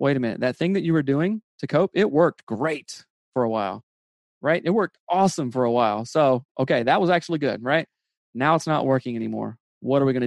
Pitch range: 125-165 Hz